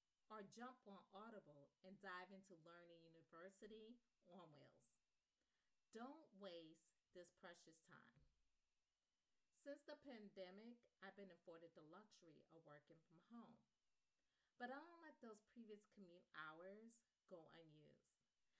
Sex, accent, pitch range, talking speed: female, American, 165-220 Hz, 125 wpm